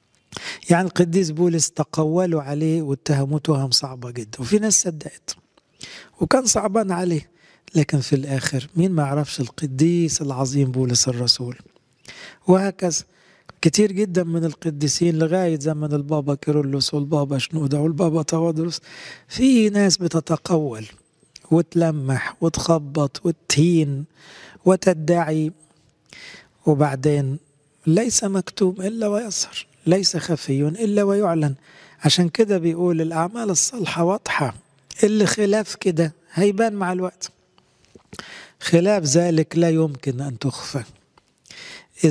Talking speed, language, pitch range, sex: 105 wpm, English, 145-180 Hz, male